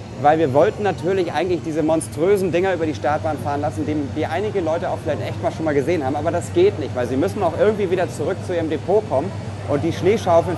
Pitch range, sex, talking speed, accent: 120-165 Hz, male, 240 wpm, German